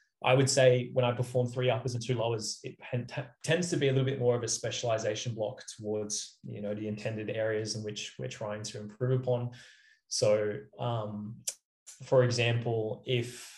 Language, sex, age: English, male, 20-39